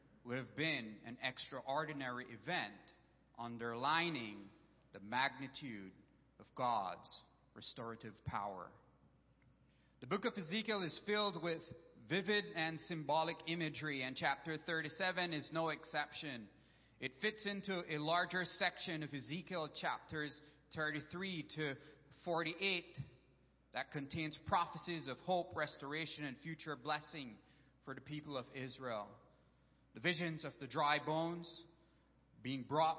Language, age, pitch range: English, 30-49, 135-165 Hz